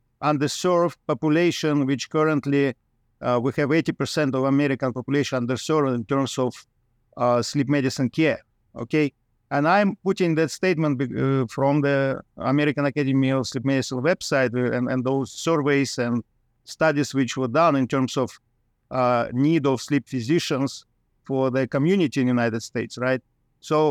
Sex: male